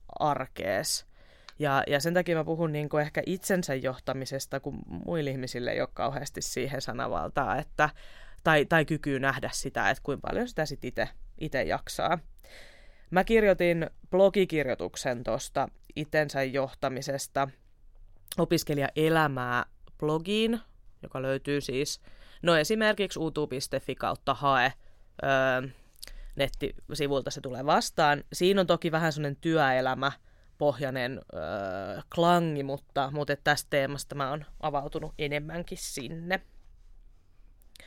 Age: 20-39